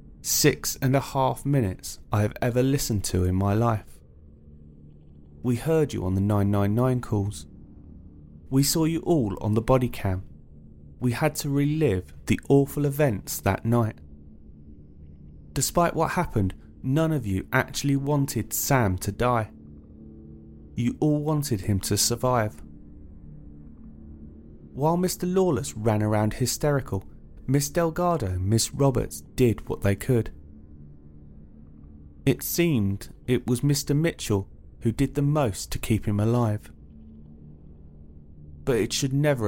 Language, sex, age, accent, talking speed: English, male, 30-49, British, 130 wpm